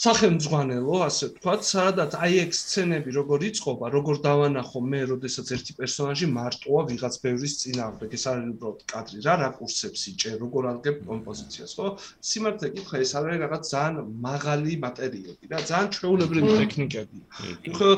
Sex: male